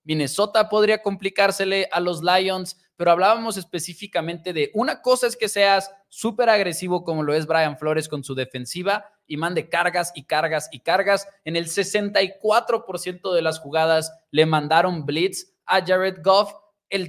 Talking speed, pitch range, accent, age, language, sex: 160 wpm, 155-200 Hz, Mexican, 20-39, Spanish, male